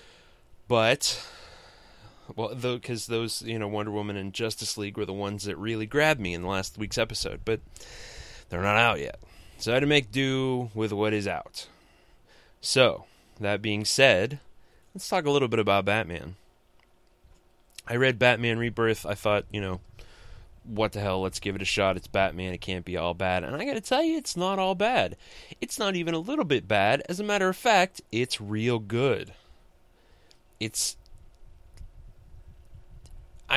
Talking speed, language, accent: 175 wpm, English, American